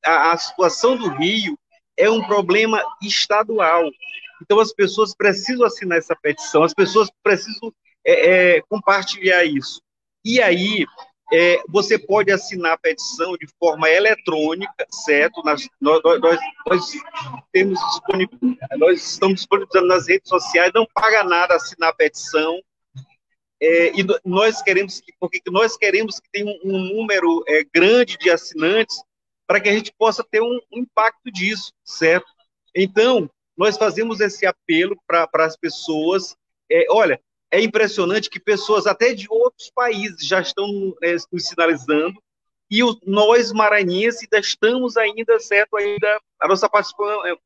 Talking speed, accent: 140 wpm, Brazilian